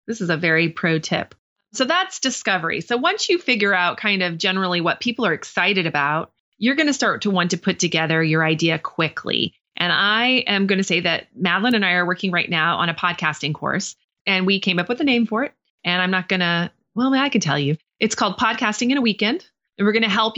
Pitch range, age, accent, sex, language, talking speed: 170-215 Hz, 30-49, American, female, English, 240 wpm